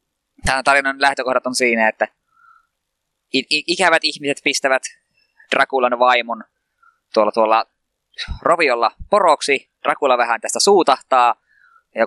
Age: 20-39